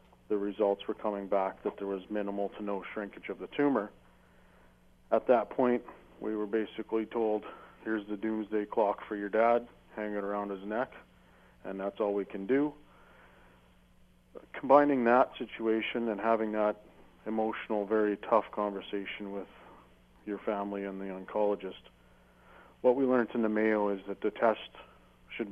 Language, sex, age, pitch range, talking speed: English, male, 40-59, 95-110 Hz, 160 wpm